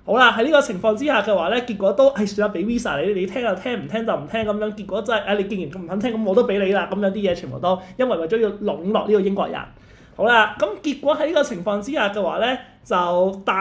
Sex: male